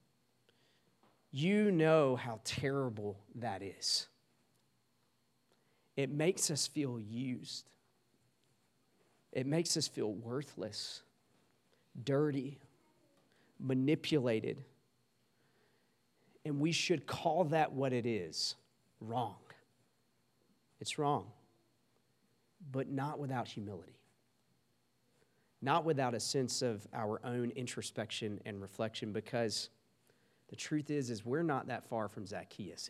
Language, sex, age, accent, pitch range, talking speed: English, male, 40-59, American, 115-140 Hz, 100 wpm